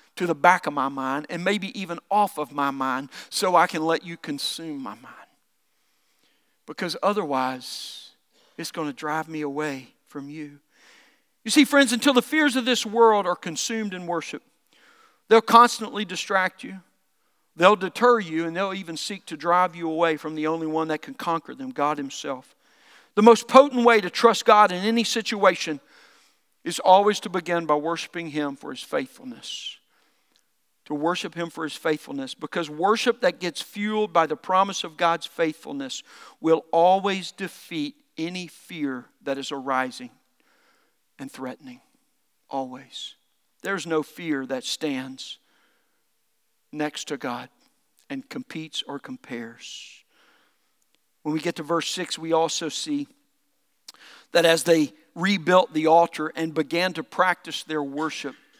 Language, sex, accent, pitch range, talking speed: English, male, American, 155-215 Hz, 155 wpm